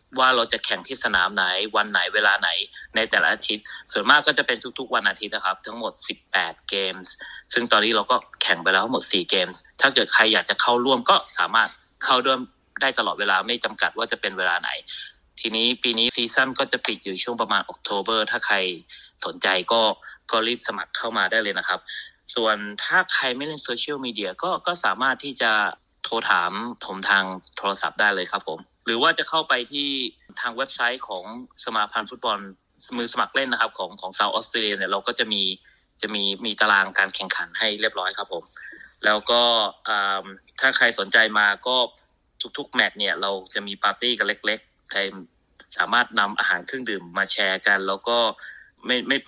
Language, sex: Thai, male